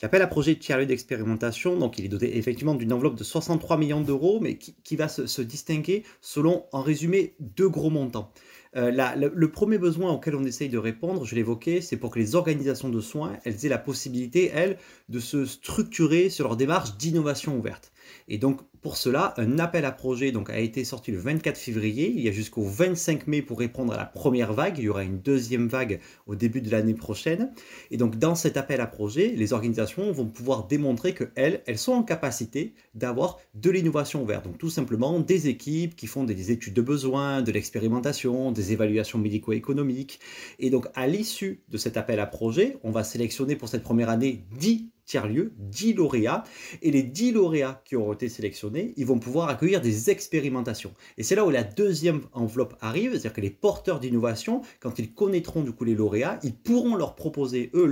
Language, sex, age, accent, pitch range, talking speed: French, male, 30-49, French, 115-160 Hz, 205 wpm